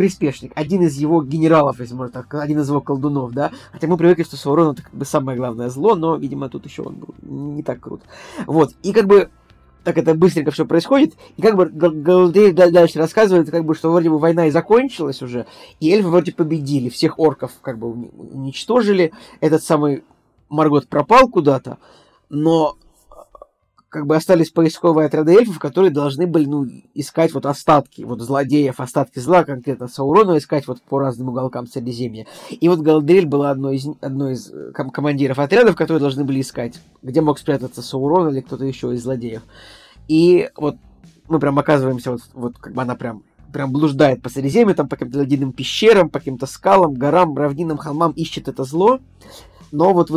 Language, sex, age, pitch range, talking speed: Russian, male, 20-39, 135-165 Hz, 185 wpm